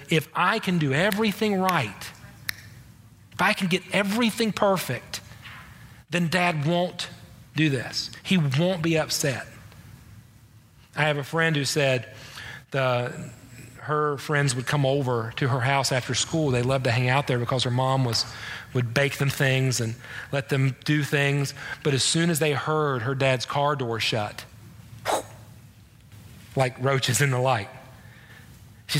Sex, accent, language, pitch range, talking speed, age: male, American, English, 120-155 Hz, 155 wpm, 40-59